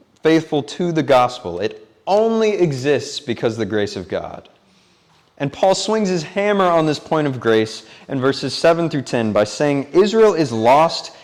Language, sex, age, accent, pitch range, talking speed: English, male, 30-49, American, 110-160 Hz, 165 wpm